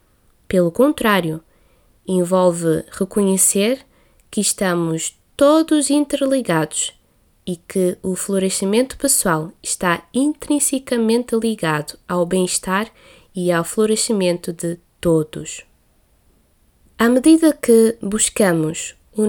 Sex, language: female, Portuguese